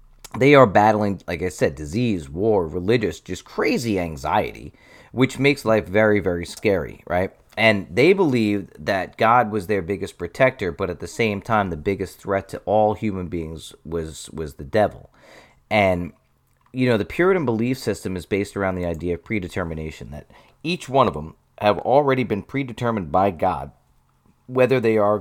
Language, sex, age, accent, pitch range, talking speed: English, male, 40-59, American, 85-115 Hz, 170 wpm